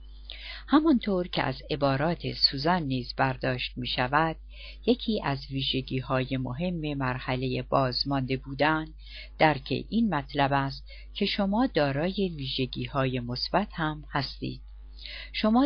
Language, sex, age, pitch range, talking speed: Persian, female, 50-69, 130-175 Hz, 110 wpm